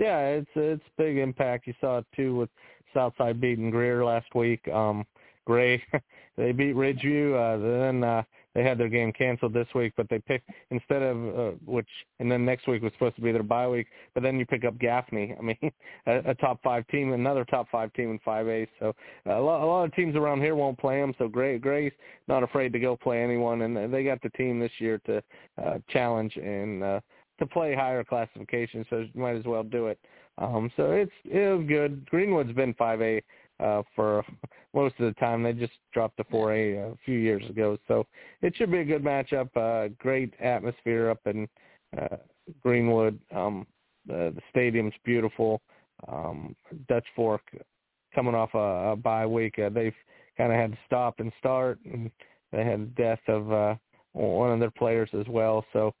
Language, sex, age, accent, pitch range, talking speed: English, male, 30-49, American, 110-130 Hz, 195 wpm